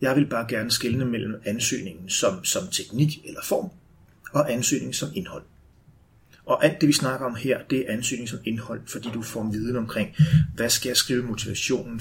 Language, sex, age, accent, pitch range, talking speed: Danish, male, 30-49, native, 105-120 Hz, 195 wpm